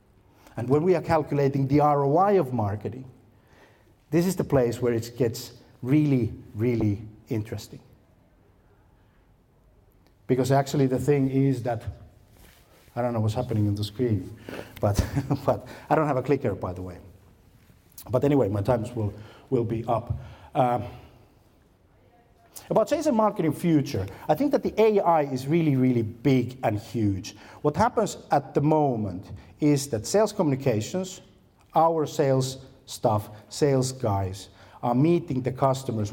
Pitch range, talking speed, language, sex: 105-140 Hz, 145 wpm, Finnish, male